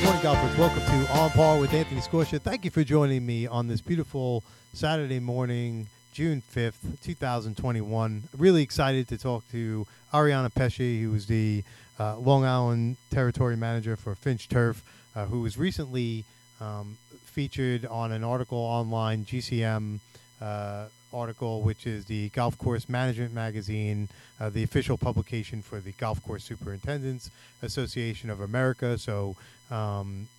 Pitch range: 110-130 Hz